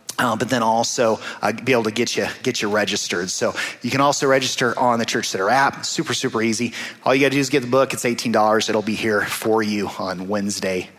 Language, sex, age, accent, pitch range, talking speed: English, male, 30-49, American, 110-140 Hz, 235 wpm